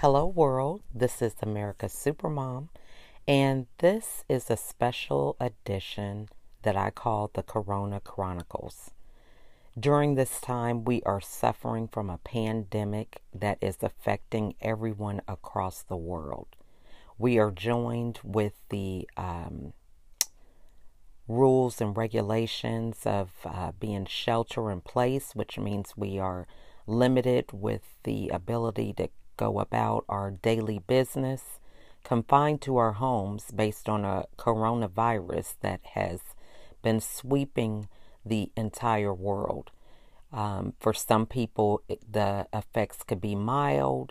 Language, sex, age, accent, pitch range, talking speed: English, female, 40-59, American, 100-120 Hz, 115 wpm